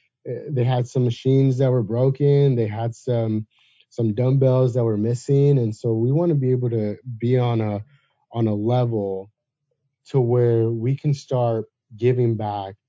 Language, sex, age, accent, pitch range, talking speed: English, male, 30-49, American, 115-135 Hz, 170 wpm